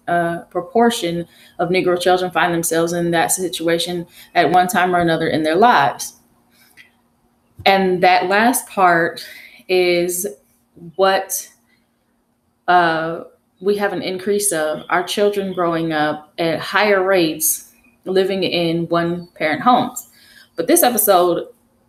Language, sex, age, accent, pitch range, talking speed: English, female, 20-39, American, 170-190 Hz, 120 wpm